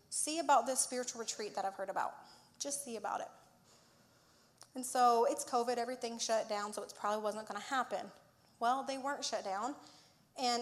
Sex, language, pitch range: female, English, 210-265 Hz